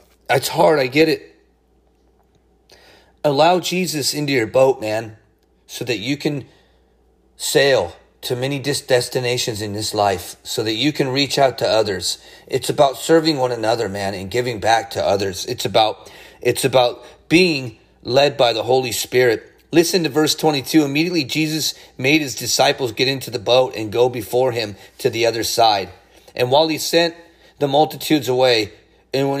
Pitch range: 125-165 Hz